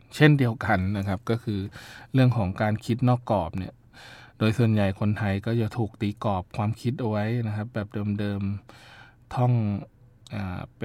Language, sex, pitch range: Thai, male, 100-120 Hz